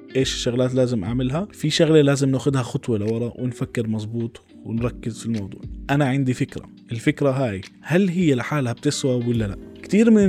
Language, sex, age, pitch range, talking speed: Arabic, male, 20-39, 125-155 Hz, 165 wpm